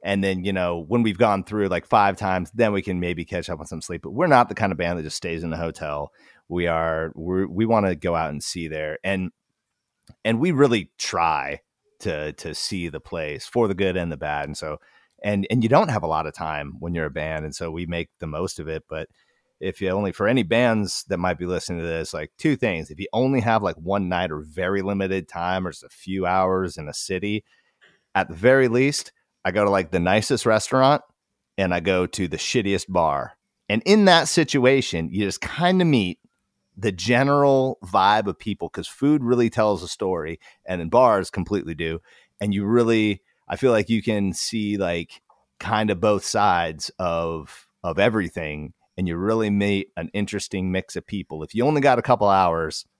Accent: American